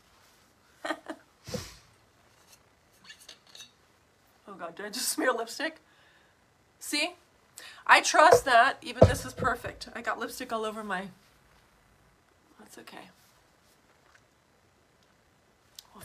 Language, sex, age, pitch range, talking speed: English, female, 30-49, 220-270 Hz, 90 wpm